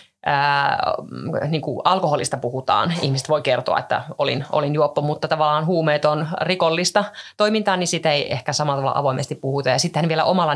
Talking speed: 170 wpm